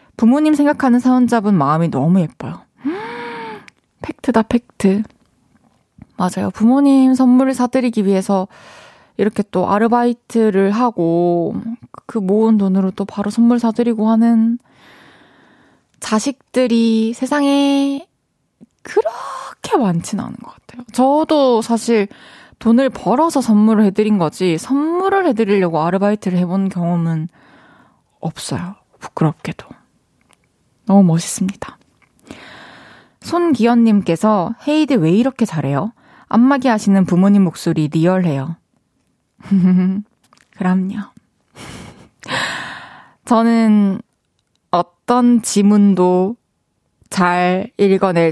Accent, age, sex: native, 20-39, female